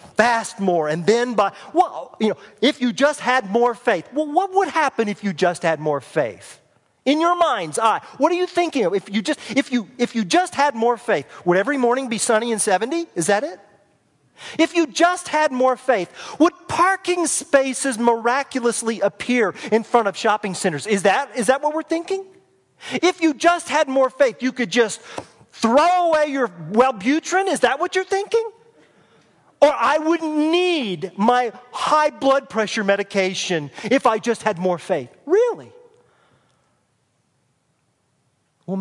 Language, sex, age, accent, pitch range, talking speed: English, male, 40-59, American, 205-305 Hz, 170 wpm